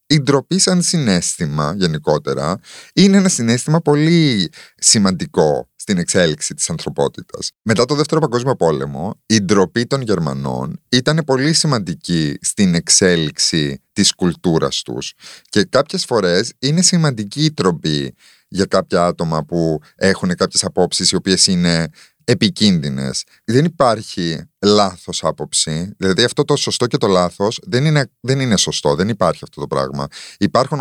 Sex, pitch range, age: male, 90-140 Hz, 30-49